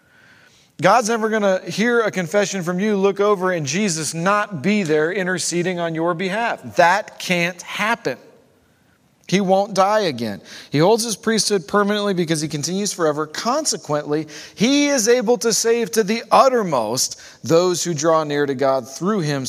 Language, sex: English, male